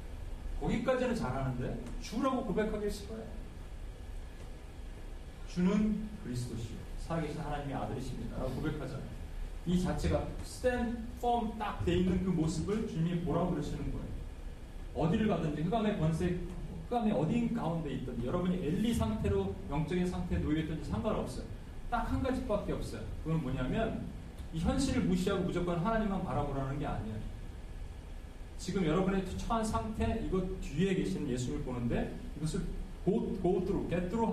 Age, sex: 40-59, male